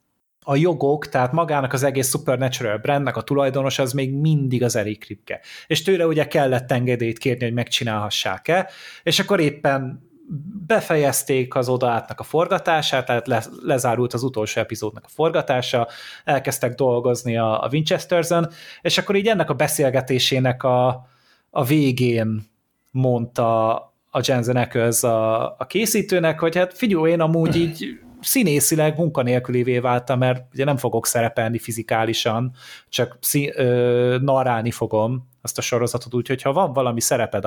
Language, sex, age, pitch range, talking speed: Hungarian, male, 30-49, 120-160 Hz, 145 wpm